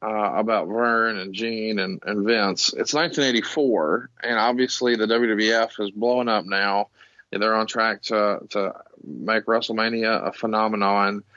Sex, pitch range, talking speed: male, 110-125 Hz, 145 wpm